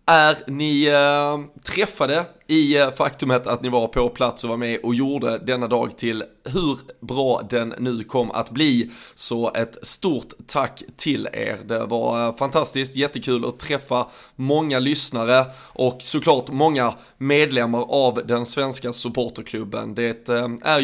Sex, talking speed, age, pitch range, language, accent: male, 140 wpm, 20-39, 120-140 Hz, Swedish, native